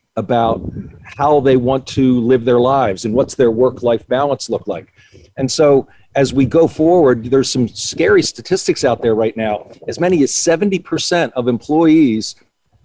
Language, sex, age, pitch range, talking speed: English, male, 50-69, 115-145 Hz, 165 wpm